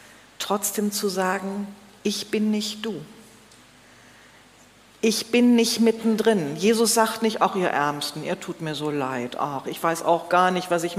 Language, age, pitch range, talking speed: German, 40-59, 185-220 Hz, 165 wpm